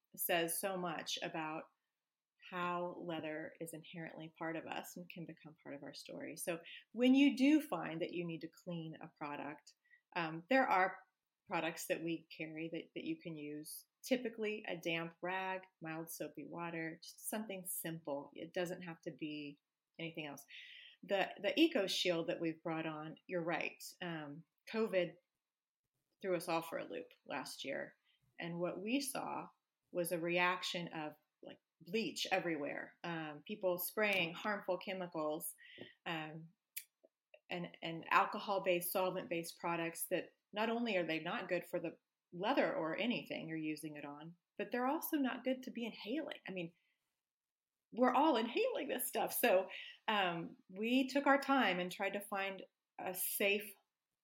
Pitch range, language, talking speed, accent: 165-210 Hz, English, 160 wpm, American